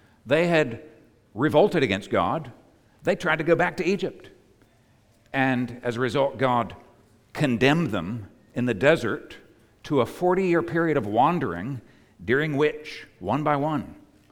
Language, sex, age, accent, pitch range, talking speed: English, male, 60-79, American, 110-150 Hz, 140 wpm